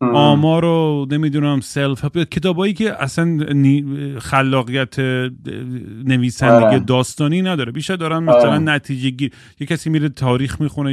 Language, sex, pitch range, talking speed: Persian, male, 120-150 Hz, 120 wpm